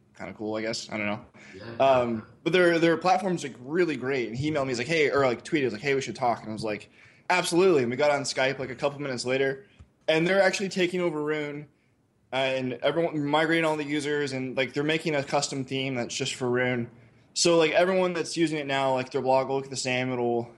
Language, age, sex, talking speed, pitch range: English, 20-39, male, 245 wpm, 120-150 Hz